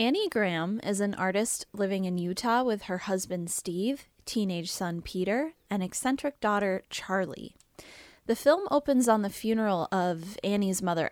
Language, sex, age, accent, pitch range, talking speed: English, female, 10-29, American, 180-230 Hz, 150 wpm